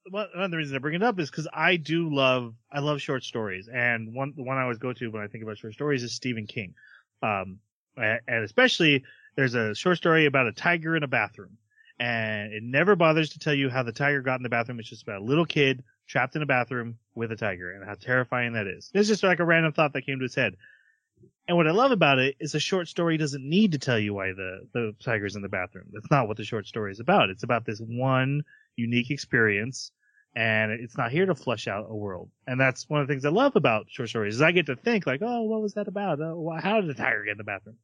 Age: 30-49